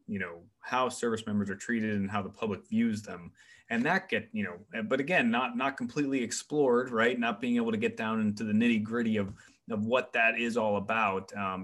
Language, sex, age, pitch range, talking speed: English, male, 20-39, 100-145 Hz, 220 wpm